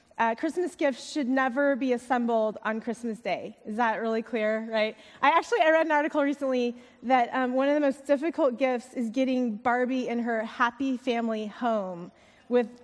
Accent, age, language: American, 20-39, English